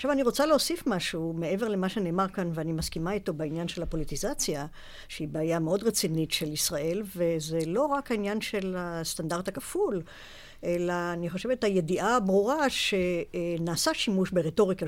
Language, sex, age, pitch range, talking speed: Hebrew, female, 60-79, 170-230 Hz, 145 wpm